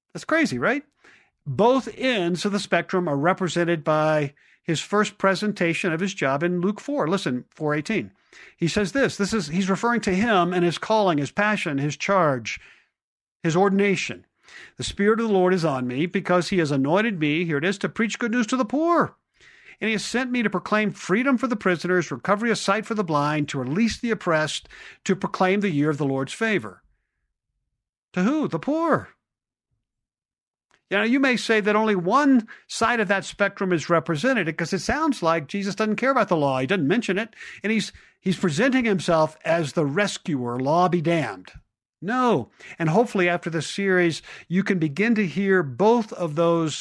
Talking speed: 190 wpm